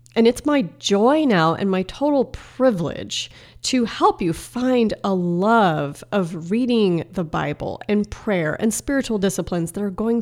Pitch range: 165-225 Hz